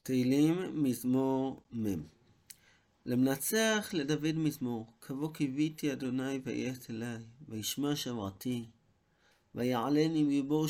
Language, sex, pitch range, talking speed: Hebrew, male, 110-145 Hz, 85 wpm